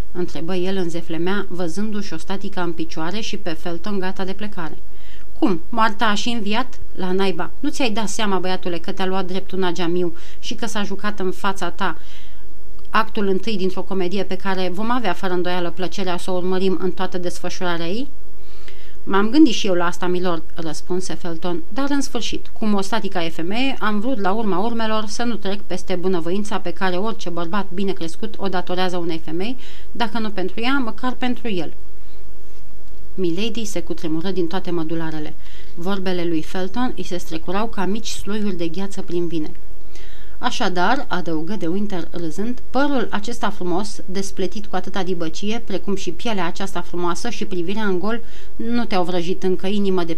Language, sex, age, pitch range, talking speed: Romanian, female, 30-49, 175-210 Hz, 180 wpm